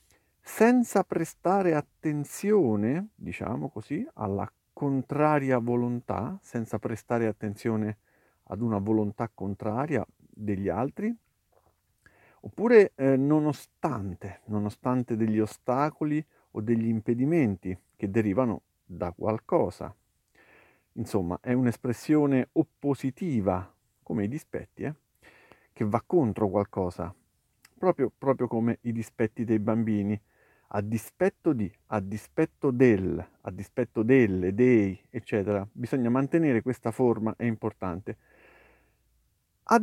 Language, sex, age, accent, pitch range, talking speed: Italian, male, 50-69, native, 105-135 Hz, 100 wpm